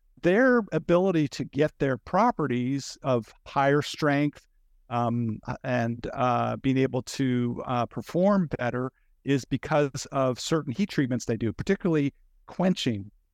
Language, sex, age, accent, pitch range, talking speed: English, male, 50-69, American, 130-165 Hz, 125 wpm